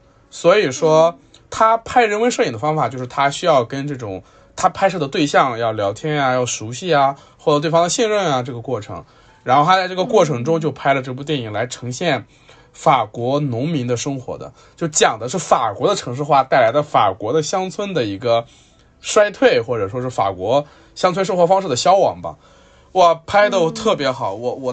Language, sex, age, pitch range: Chinese, male, 20-39, 125-180 Hz